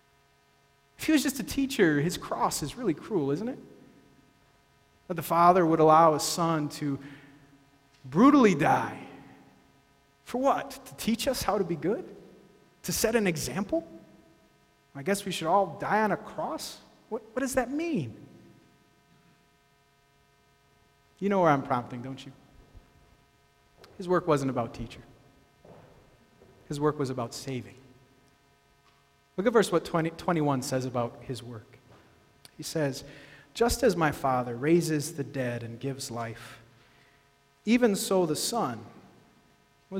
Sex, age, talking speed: male, 30-49, 140 wpm